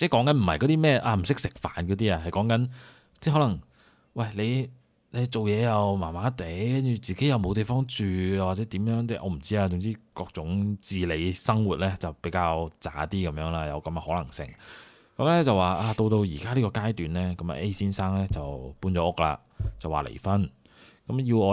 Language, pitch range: Chinese, 85-115 Hz